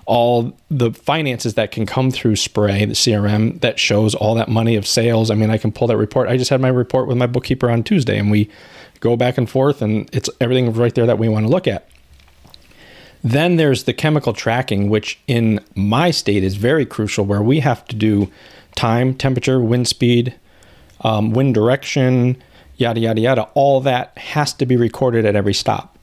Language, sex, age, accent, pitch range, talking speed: English, male, 40-59, American, 105-130 Hz, 200 wpm